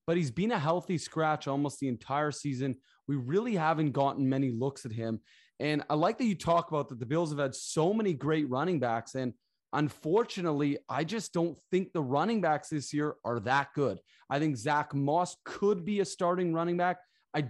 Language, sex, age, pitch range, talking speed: English, male, 30-49, 140-180 Hz, 205 wpm